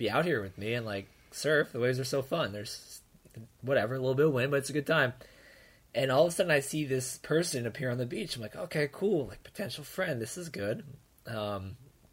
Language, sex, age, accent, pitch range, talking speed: English, male, 20-39, American, 125-160 Hz, 240 wpm